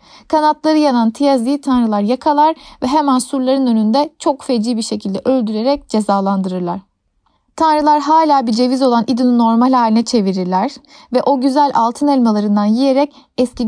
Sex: female